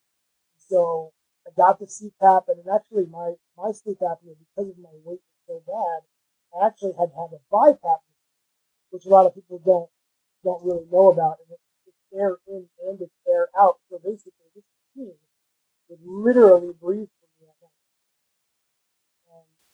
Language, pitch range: English, 170-195 Hz